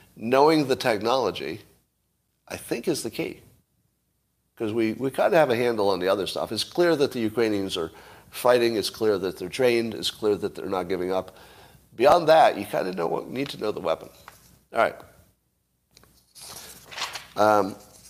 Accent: American